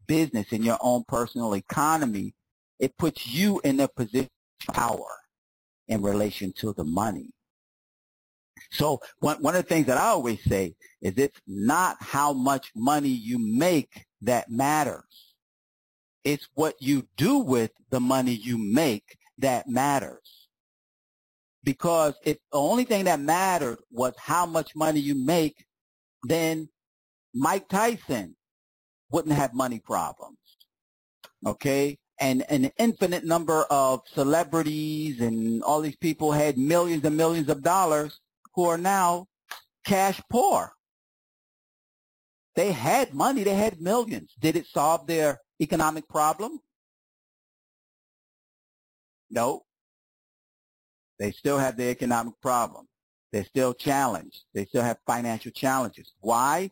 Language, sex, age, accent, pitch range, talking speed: English, male, 50-69, American, 125-170 Hz, 125 wpm